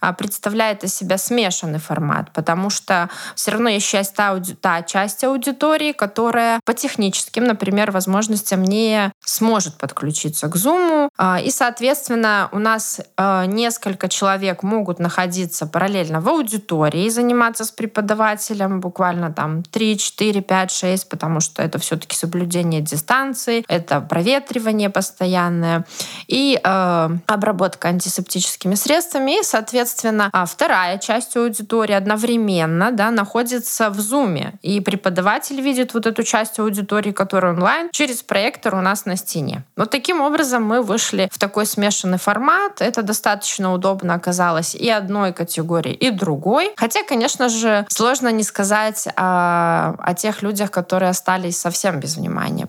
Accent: native